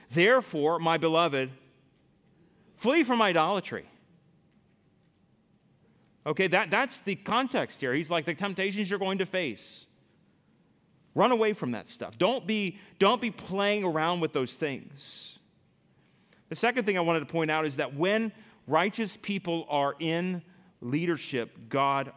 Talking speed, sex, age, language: 135 wpm, male, 40-59, English